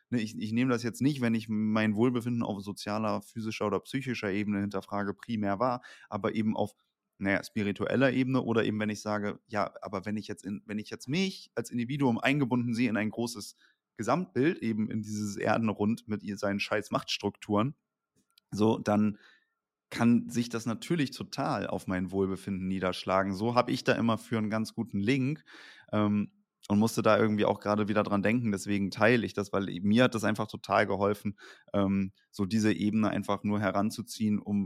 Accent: German